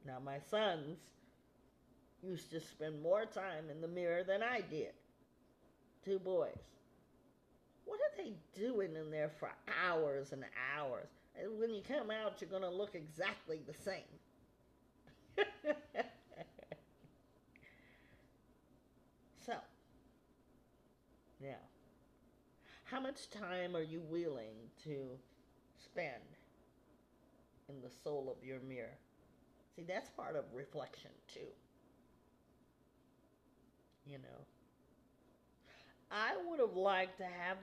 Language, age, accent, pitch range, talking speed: English, 40-59, American, 135-185 Hz, 105 wpm